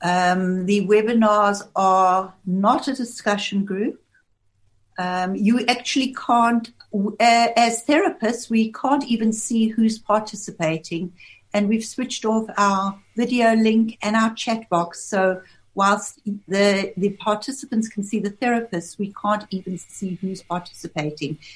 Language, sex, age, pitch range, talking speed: English, female, 60-79, 185-230 Hz, 130 wpm